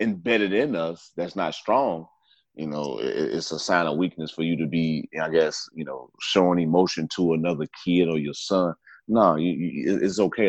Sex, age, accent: male, 30-49, American